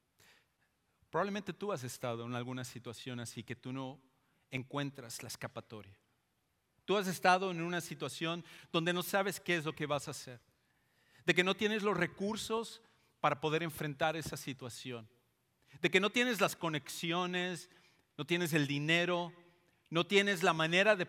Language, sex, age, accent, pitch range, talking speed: English, male, 40-59, Mexican, 125-175 Hz, 160 wpm